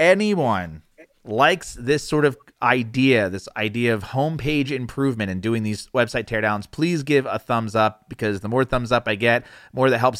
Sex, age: male, 30-49